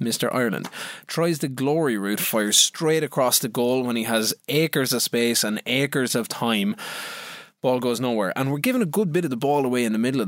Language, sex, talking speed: English, male, 220 wpm